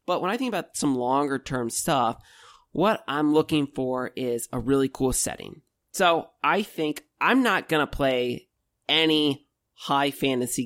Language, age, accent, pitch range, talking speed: English, 30-49, American, 125-160 Hz, 165 wpm